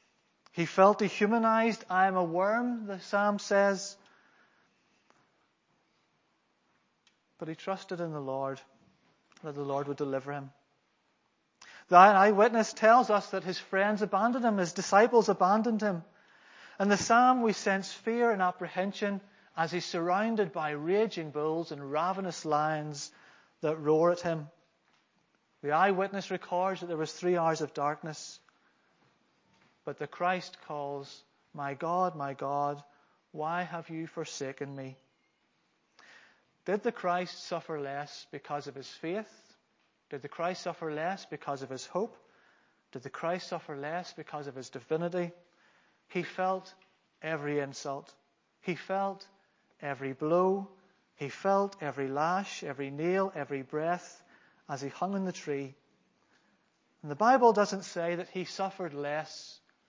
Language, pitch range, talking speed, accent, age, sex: English, 150-195 Hz, 135 wpm, British, 30-49, male